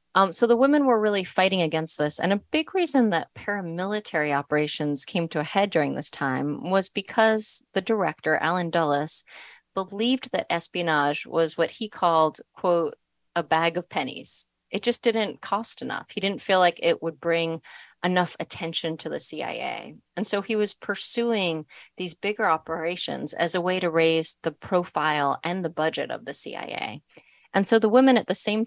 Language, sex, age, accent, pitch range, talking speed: English, female, 30-49, American, 165-205 Hz, 180 wpm